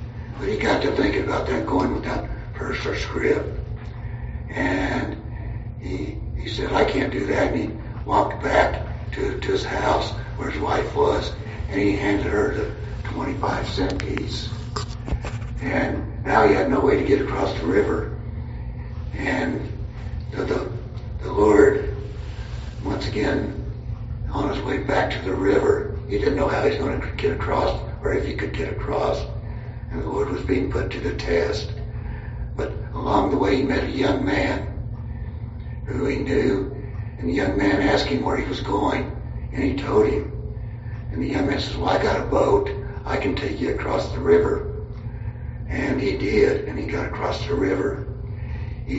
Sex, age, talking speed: male, 60-79, 175 wpm